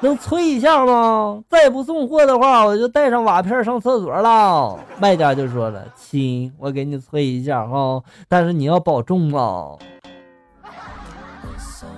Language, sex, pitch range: Chinese, male, 125-185 Hz